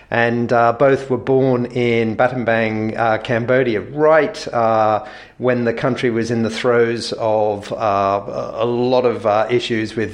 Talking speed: 150 wpm